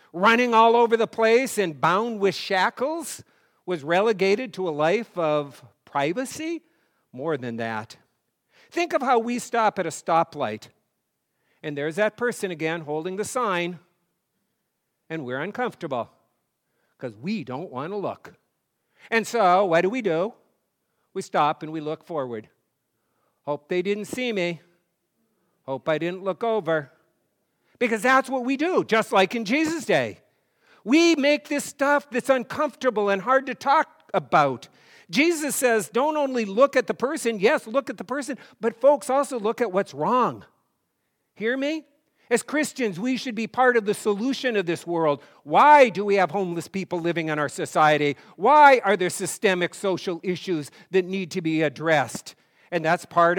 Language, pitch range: English, 170-250 Hz